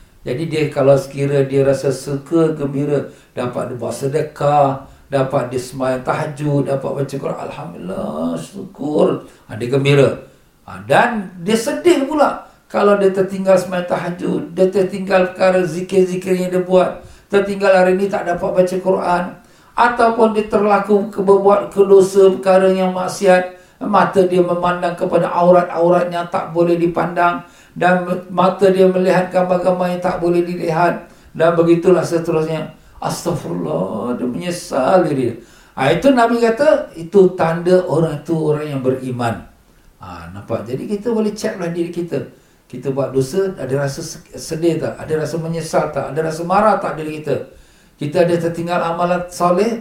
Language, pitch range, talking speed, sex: Malay, 155-190 Hz, 150 wpm, male